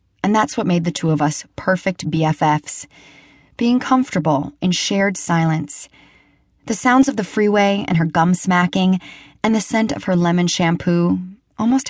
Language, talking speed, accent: English, 160 wpm, American